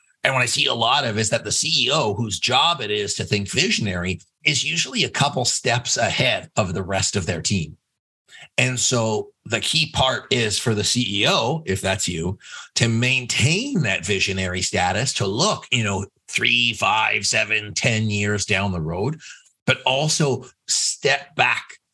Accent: American